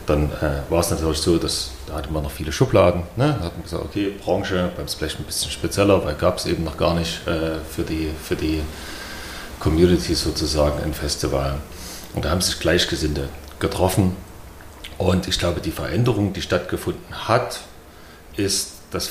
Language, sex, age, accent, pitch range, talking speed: German, male, 40-59, German, 80-95 Hz, 175 wpm